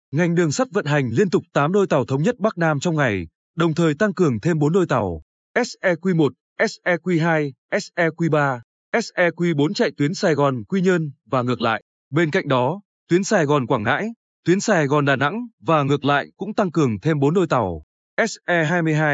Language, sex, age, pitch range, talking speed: Vietnamese, male, 20-39, 145-190 Hz, 180 wpm